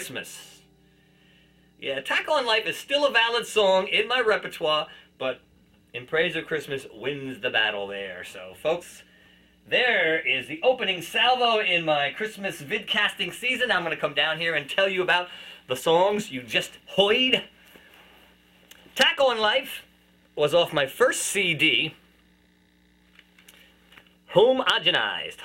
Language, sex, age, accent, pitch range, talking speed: English, male, 30-49, American, 125-205 Hz, 135 wpm